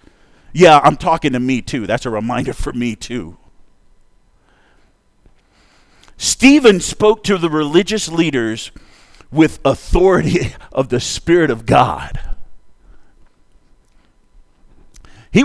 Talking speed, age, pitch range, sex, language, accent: 100 wpm, 50-69, 130-205 Hz, male, English, American